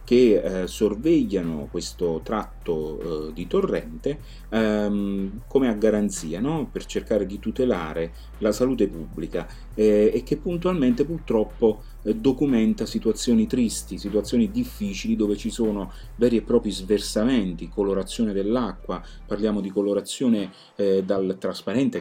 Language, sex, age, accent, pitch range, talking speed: Italian, male, 30-49, native, 90-115 Hz, 125 wpm